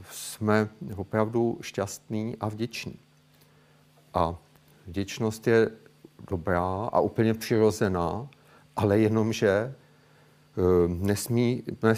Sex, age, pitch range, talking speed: male, 50-69, 95-115 Hz, 75 wpm